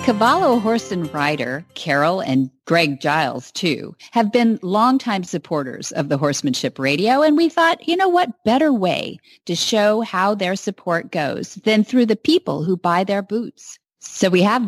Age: 40-59